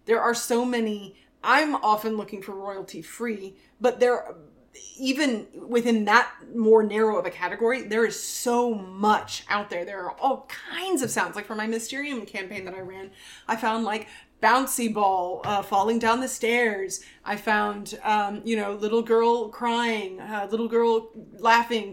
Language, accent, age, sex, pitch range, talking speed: English, American, 30-49, female, 195-235 Hz, 170 wpm